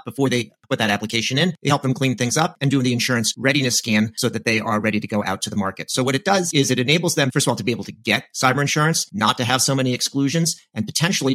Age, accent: 40-59, American